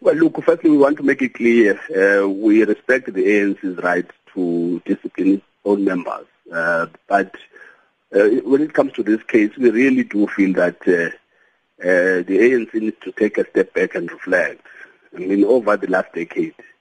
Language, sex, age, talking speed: English, male, 50-69, 185 wpm